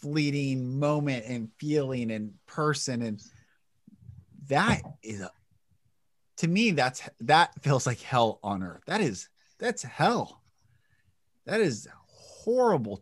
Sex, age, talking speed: male, 30-49, 120 wpm